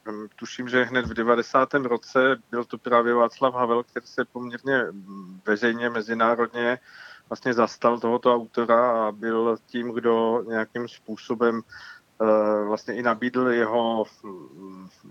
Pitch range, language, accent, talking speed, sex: 115-130 Hz, Czech, native, 130 wpm, male